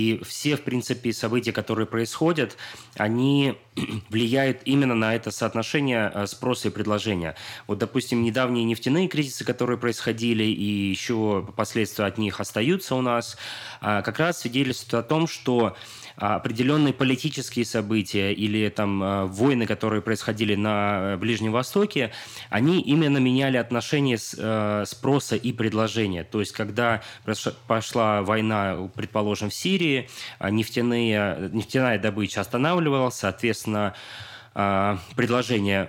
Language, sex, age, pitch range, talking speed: Russian, male, 20-39, 105-125 Hz, 115 wpm